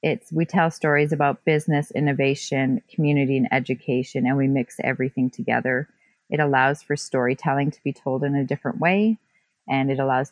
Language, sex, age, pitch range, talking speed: English, female, 30-49, 135-160 Hz, 170 wpm